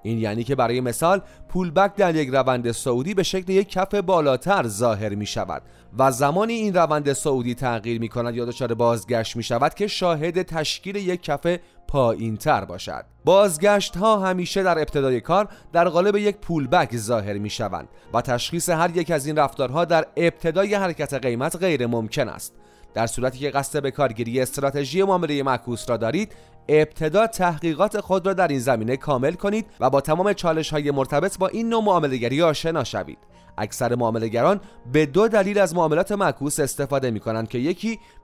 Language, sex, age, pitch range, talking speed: Persian, male, 30-49, 125-190 Hz, 170 wpm